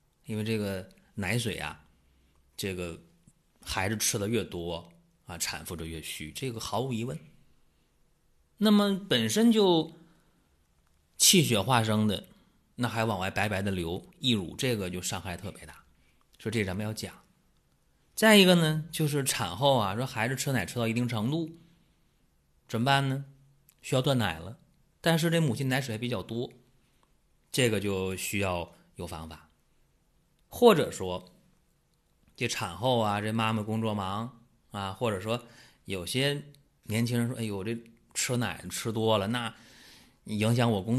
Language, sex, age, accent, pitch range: Chinese, male, 30-49, native, 95-130 Hz